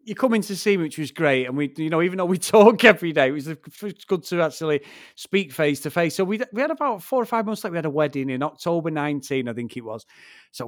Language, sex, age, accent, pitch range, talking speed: English, male, 30-49, British, 145-220 Hz, 280 wpm